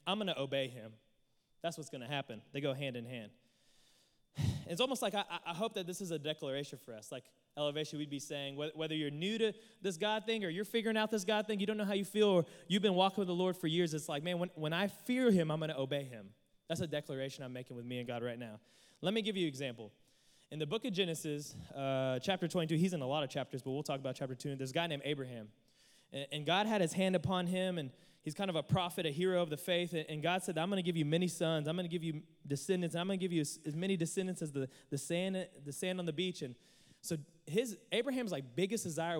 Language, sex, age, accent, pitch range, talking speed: English, male, 20-39, American, 140-180 Hz, 270 wpm